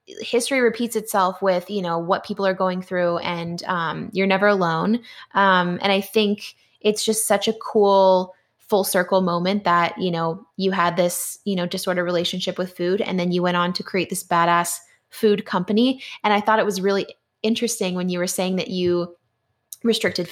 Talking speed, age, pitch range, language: 190 wpm, 10-29, 175-210 Hz, English